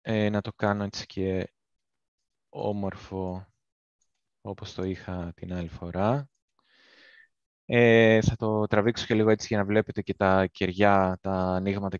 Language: Greek